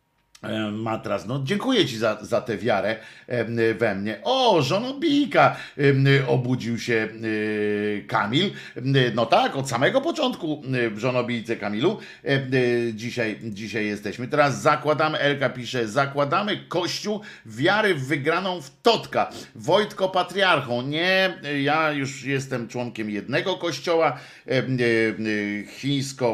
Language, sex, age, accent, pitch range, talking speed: Polish, male, 50-69, native, 105-140 Hz, 105 wpm